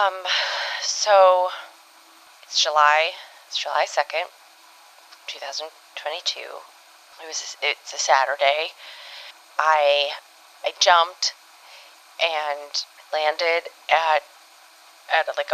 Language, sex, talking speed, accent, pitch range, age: English, female, 80 wpm, American, 160-220 Hz, 20-39